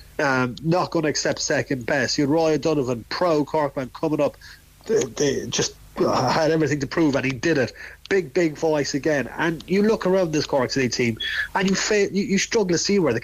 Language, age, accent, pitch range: English, 30-49, Irish, 135-175 Hz